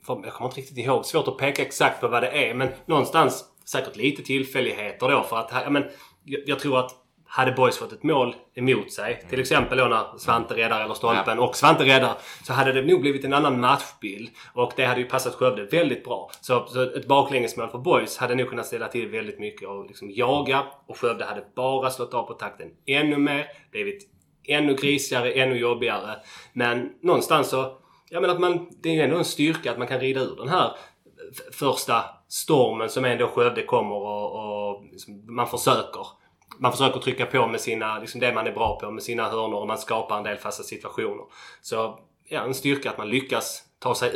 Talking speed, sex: 210 wpm, male